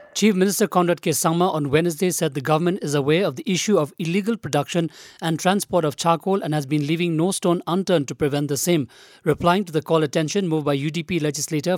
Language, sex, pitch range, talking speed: English, male, 150-185 Hz, 215 wpm